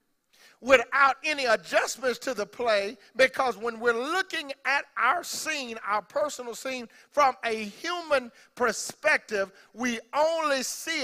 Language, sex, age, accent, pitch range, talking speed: English, male, 50-69, American, 225-280 Hz, 125 wpm